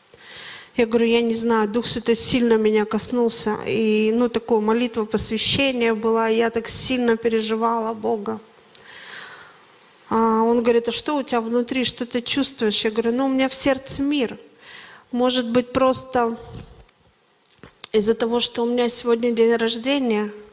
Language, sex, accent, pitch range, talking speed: Russian, female, native, 220-245 Hz, 150 wpm